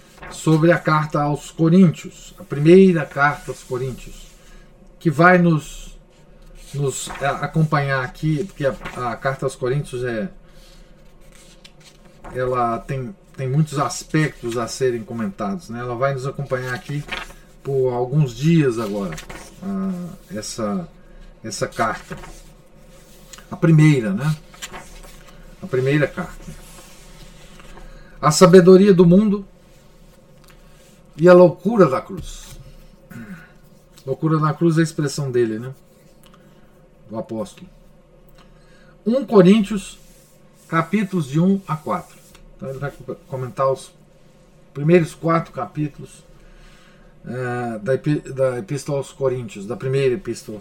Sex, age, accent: male, 50-69, Brazilian